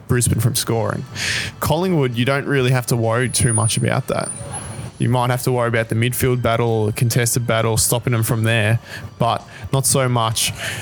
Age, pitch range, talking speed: 20-39, 115-125 Hz, 190 wpm